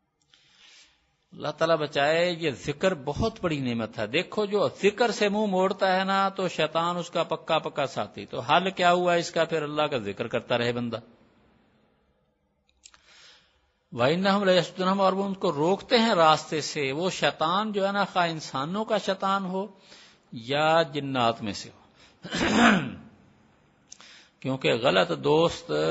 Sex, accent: male, Indian